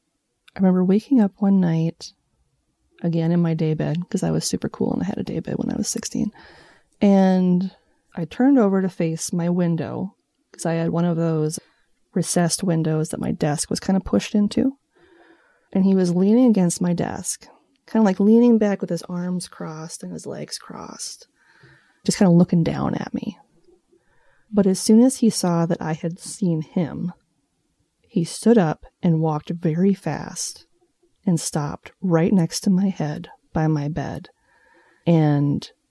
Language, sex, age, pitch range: English, female, 20-39, 160-195 Hz